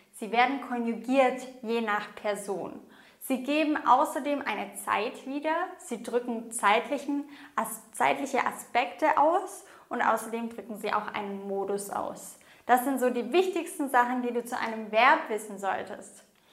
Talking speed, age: 140 wpm, 20-39